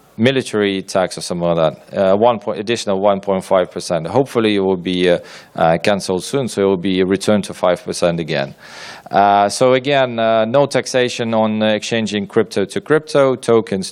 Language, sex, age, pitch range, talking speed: English, male, 40-59, 100-120 Hz, 175 wpm